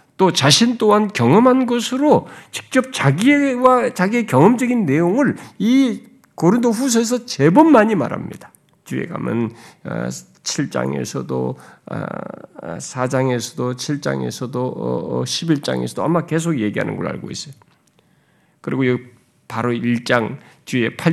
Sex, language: male, Korean